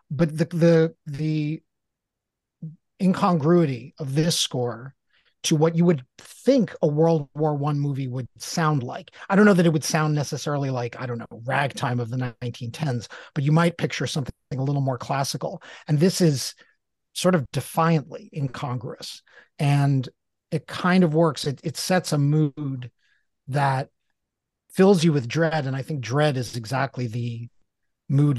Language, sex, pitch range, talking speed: English, male, 130-155 Hz, 160 wpm